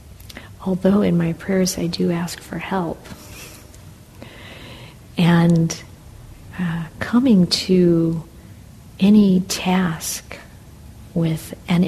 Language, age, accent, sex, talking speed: English, 50-69, American, female, 85 wpm